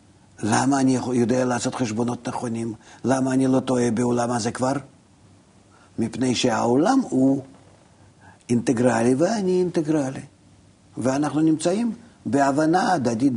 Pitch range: 100-130 Hz